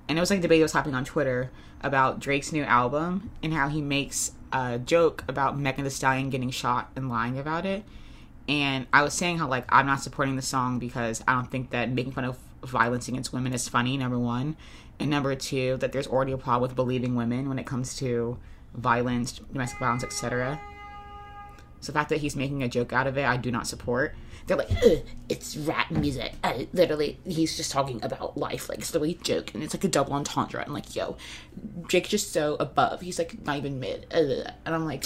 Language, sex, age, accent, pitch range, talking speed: English, female, 20-39, American, 125-160 Hz, 225 wpm